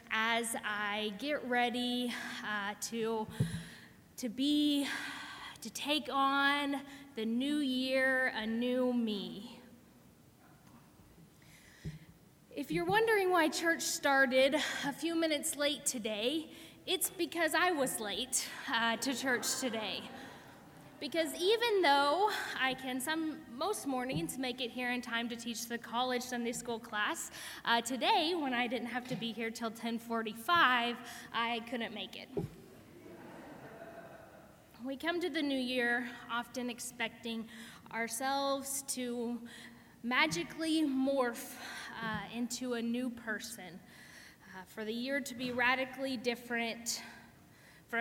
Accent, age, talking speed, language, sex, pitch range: American, 10-29, 120 wpm, English, female, 230-280 Hz